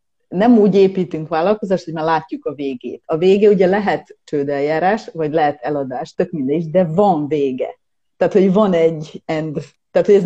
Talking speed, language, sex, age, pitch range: 175 wpm, Hungarian, female, 30-49, 155-195 Hz